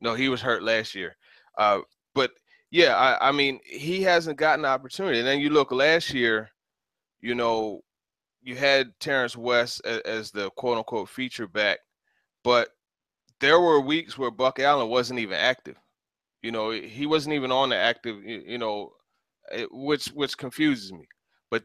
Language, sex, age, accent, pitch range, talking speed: English, male, 30-49, American, 110-130 Hz, 170 wpm